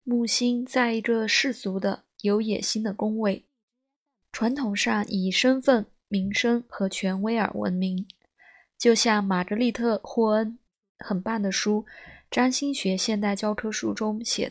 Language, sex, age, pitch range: Chinese, female, 20-39, 195-245 Hz